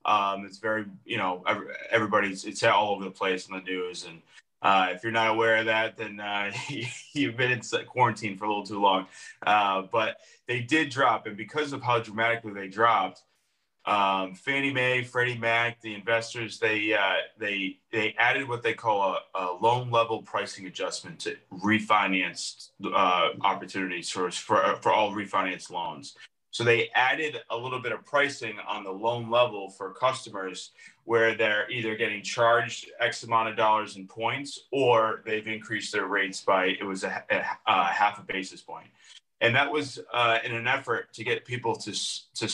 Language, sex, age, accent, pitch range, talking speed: English, male, 30-49, American, 100-120 Hz, 180 wpm